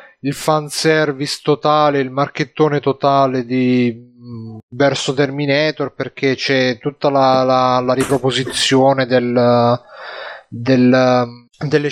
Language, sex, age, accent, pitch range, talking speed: Italian, male, 30-49, native, 130-150 Hz, 95 wpm